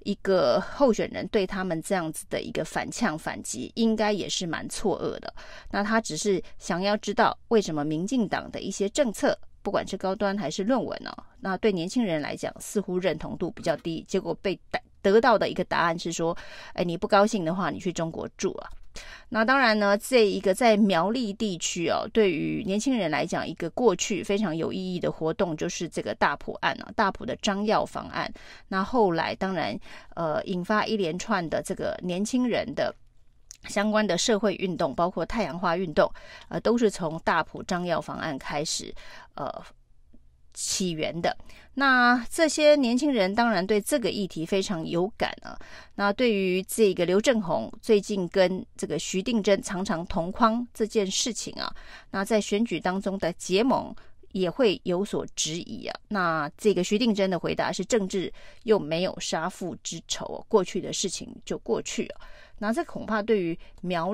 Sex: female